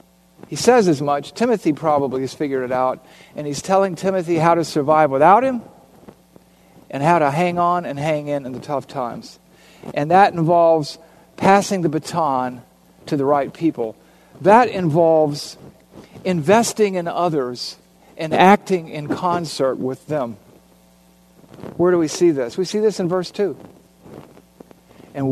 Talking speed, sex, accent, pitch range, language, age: 150 wpm, male, American, 125-180 Hz, English, 50-69